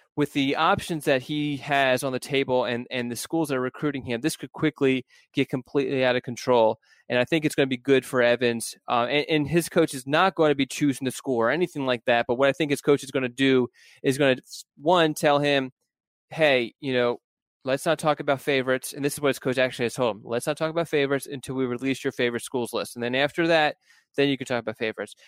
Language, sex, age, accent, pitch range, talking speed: English, male, 20-39, American, 120-145 Hz, 255 wpm